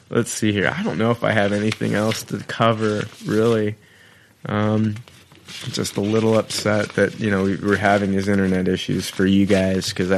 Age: 20-39